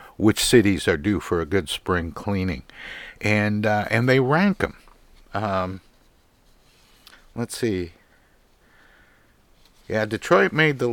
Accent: American